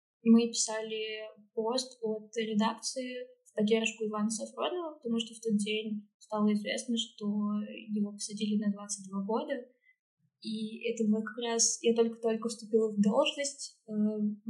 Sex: female